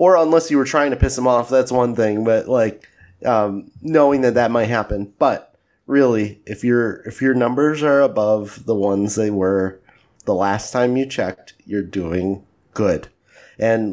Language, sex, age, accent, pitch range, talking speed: English, male, 30-49, American, 115-145 Hz, 180 wpm